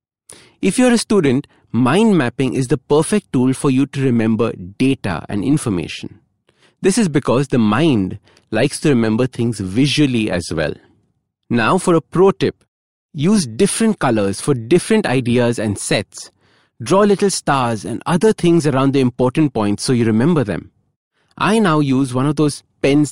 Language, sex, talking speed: English, male, 165 wpm